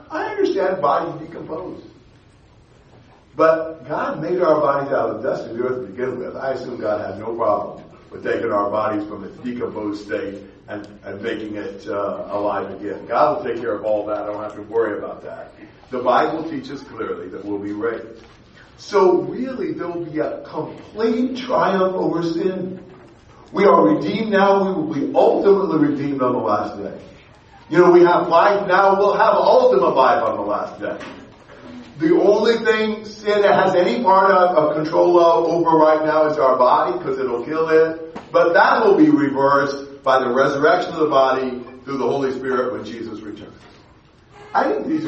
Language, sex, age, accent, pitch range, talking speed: English, male, 50-69, American, 130-215 Hz, 190 wpm